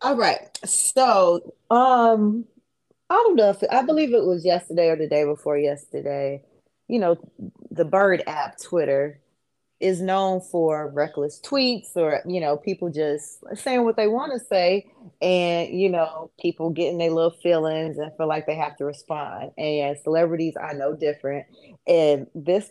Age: 20-39